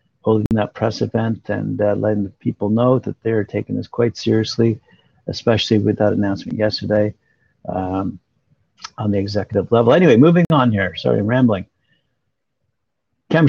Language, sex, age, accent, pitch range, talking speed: English, male, 60-79, American, 110-135 Hz, 150 wpm